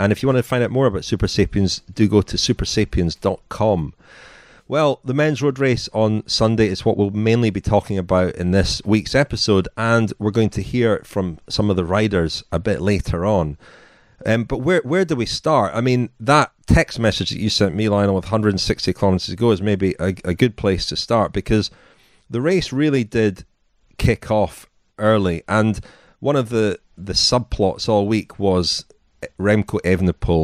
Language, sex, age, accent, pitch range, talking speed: English, male, 30-49, British, 95-120 Hz, 185 wpm